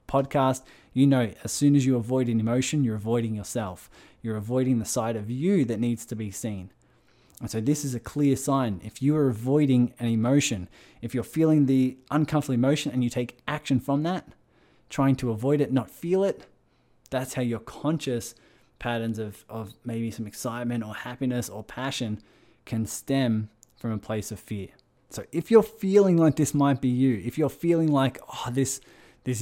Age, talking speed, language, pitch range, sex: 20-39, 190 wpm, English, 115-140 Hz, male